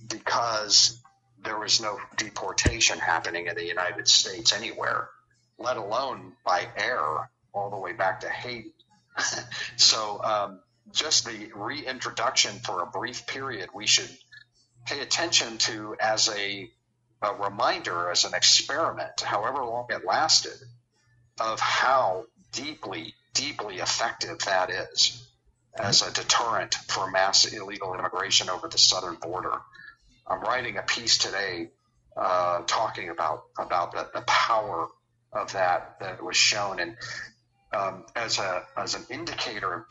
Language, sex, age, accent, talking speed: English, male, 50-69, American, 135 wpm